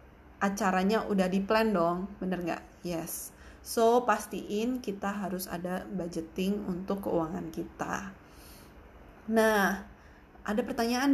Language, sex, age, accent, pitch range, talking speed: Indonesian, female, 20-39, native, 180-225 Hz, 100 wpm